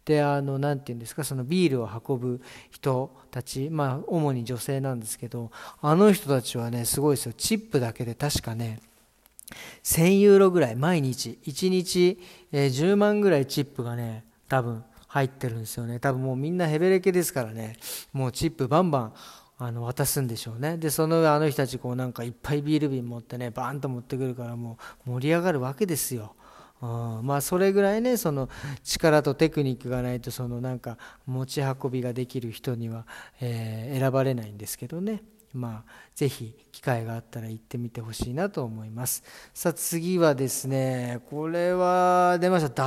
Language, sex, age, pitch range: Japanese, male, 40-59, 120-165 Hz